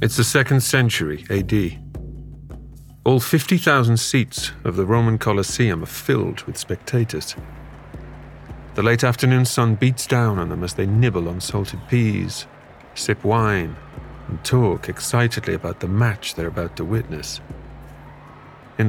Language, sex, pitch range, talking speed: English, male, 100-130 Hz, 135 wpm